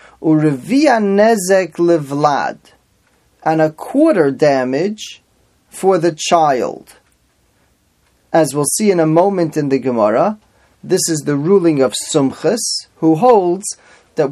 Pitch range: 145-185 Hz